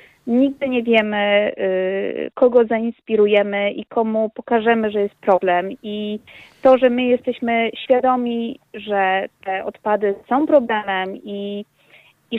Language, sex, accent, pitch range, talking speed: Polish, female, native, 195-235 Hz, 115 wpm